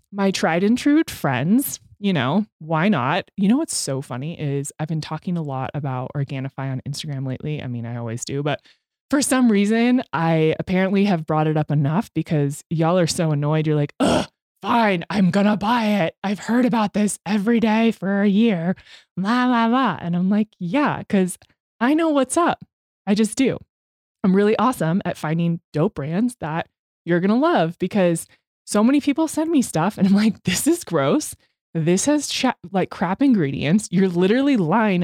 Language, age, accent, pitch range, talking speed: English, 20-39, American, 165-230 Hz, 190 wpm